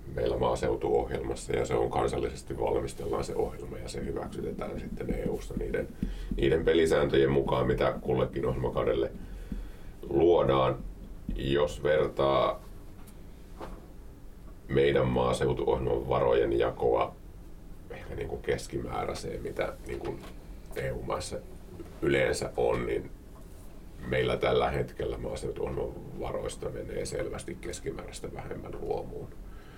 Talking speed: 100 wpm